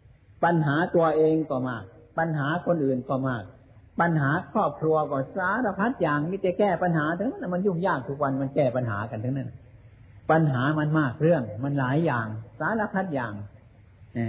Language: Thai